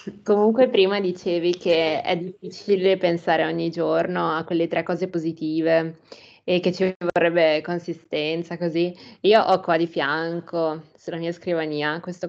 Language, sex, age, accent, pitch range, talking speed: Italian, female, 20-39, native, 160-185 Hz, 140 wpm